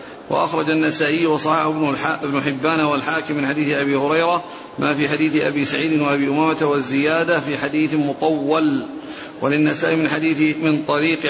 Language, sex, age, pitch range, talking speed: Arabic, male, 40-59, 150-165 Hz, 140 wpm